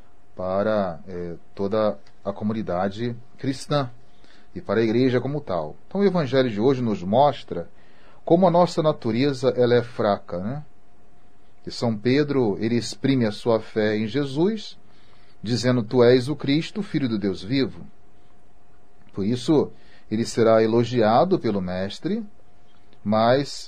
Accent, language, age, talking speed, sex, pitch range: Brazilian, Portuguese, 40-59, 135 wpm, male, 100-135 Hz